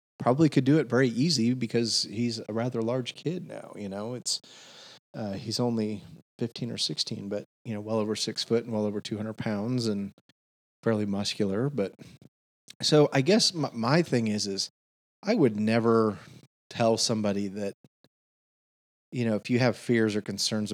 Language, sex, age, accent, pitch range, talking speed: English, male, 30-49, American, 105-125 Hz, 175 wpm